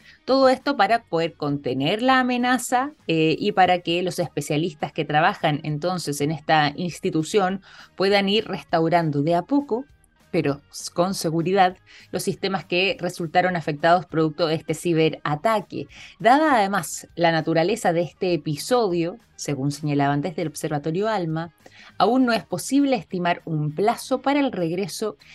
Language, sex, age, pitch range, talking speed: Spanish, female, 20-39, 160-190 Hz, 140 wpm